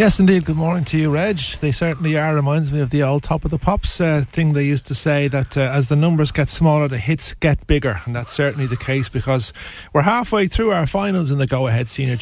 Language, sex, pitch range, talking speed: English, male, 115-150 Hz, 250 wpm